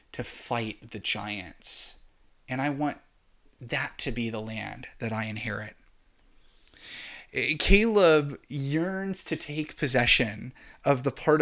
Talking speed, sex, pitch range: 120 wpm, male, 125-180 Hz